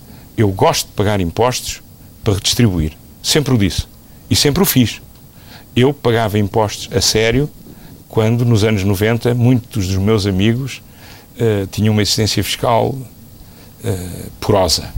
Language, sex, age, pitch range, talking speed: Portuguese, male, 50-69, 100-125 Hz, 135 wpm